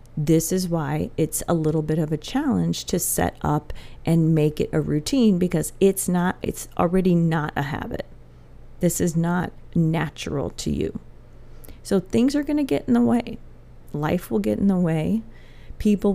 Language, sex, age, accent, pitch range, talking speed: English, female, 30-49, American, 150-180 Hz, 180 wpm